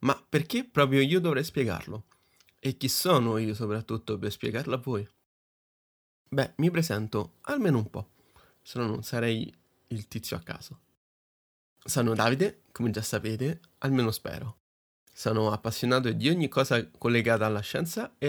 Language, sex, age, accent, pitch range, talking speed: Italian, male, 20-39, native, 110-140 Hz, 150 wpm